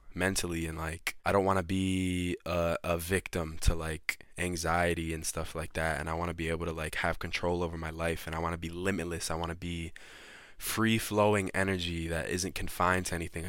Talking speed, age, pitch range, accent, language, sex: 215 wpm, 20-39, 80-95 Hz, American, English, male